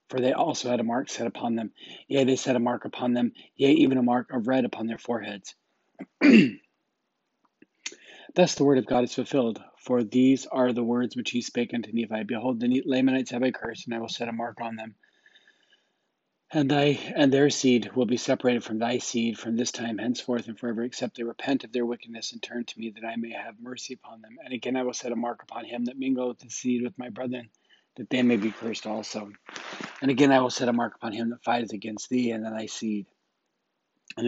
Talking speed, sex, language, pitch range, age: 225 wpm, male, English, 115-125 Hz, 30-49